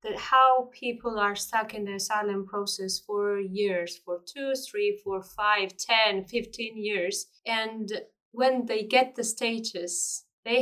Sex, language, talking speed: female, English, 145 wpm